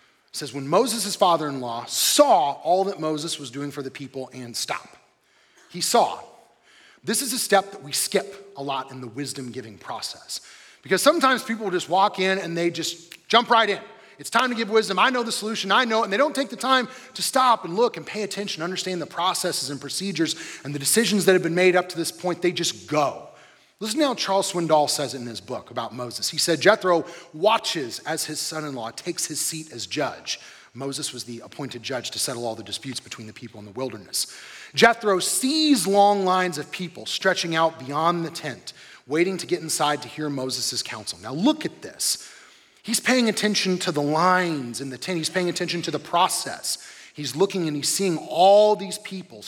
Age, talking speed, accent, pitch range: 30-49, 210 wpm, American, 145-200 Hz